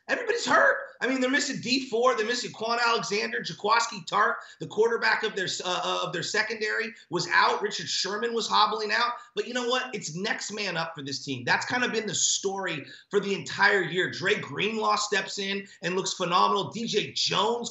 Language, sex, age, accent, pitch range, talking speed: English, male, 30-49, American, 185-245 Hz, 195 wpm